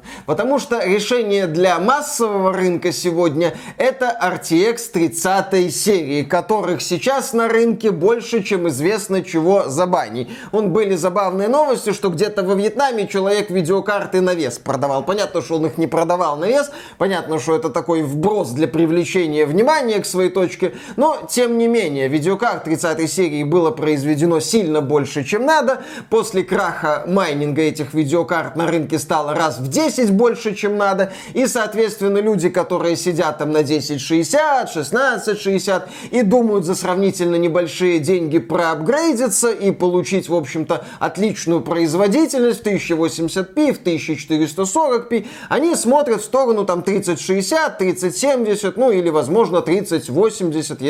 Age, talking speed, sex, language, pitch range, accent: 20-39, 140 wpm, male, Russian, 165-215 Hz, native